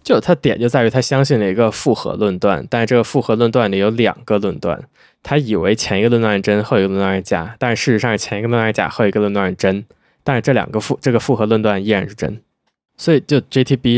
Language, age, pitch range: Chinese, 20-39, 100-120 Hz